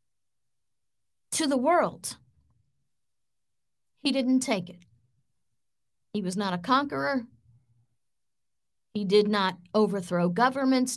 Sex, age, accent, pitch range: female, 50-69, American, 175-265 Hz